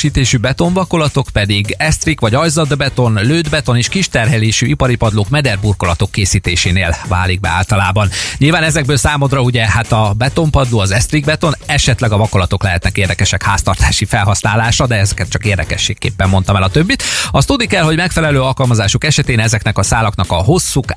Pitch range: 100-140 Hz